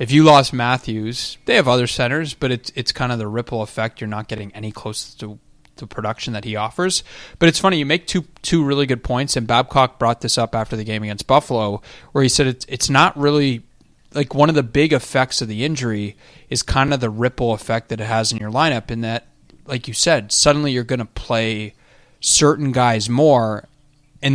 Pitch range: 115-140 Hz